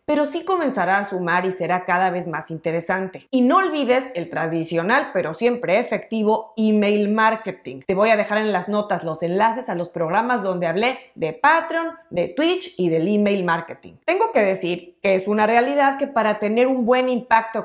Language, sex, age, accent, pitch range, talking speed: Spanish, female, 30-49, Mexican, 180-260 Hz, 190 wpm